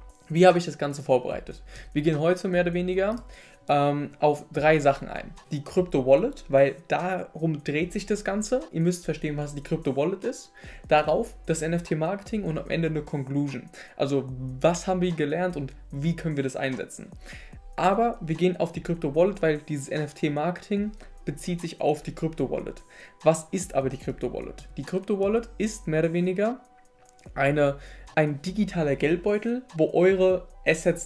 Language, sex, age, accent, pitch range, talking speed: German, male, 20-39, German, 145-185 Hz, 170 wpm